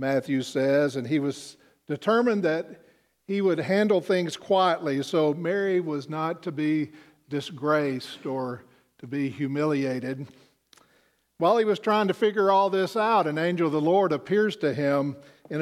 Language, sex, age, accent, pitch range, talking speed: English, male, 50-69, American, 145-200 Hz, 160 wpm